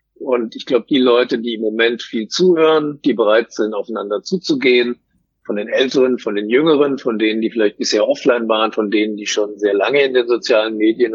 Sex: male